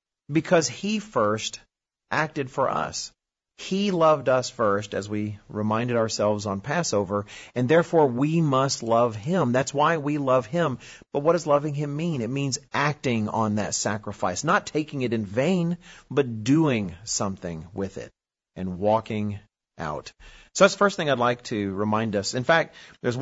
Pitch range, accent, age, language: 105-150 Hz, American, 40-59, English